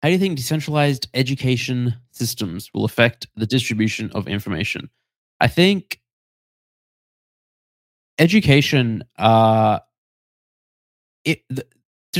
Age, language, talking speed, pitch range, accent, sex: 20-39, English, 95 wpm, 110-130 Hz, Australian, male